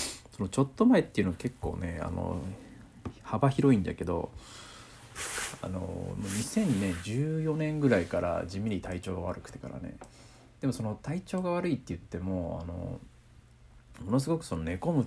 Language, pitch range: Japanese, 90-125 Hz